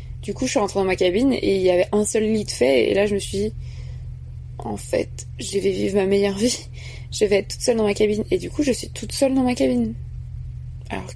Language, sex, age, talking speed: French, female, 20-39, 270 wpm